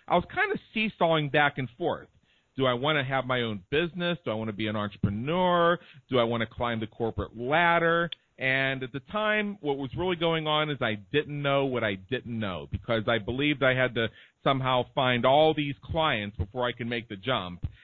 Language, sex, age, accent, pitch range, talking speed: English, male, 40-59, American, 120-155 Hz, 220 wpm